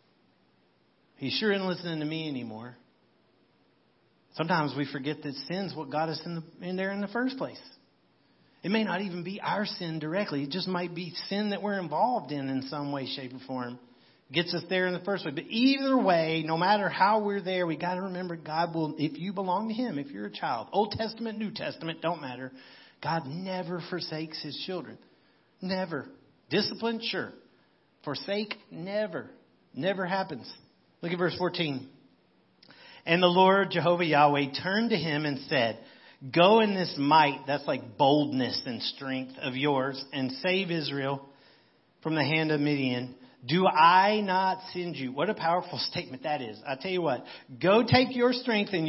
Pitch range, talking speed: 140-190 Hz, 180 wpm